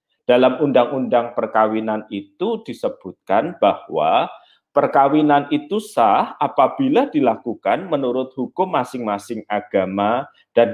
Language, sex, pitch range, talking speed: Malay, male, 110-180 Hz, 90 wpm